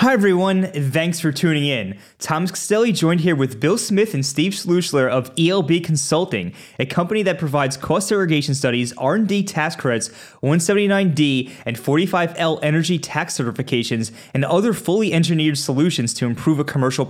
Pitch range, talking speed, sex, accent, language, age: 130-170 Hz, 155 wpm, male, American, English, 20-39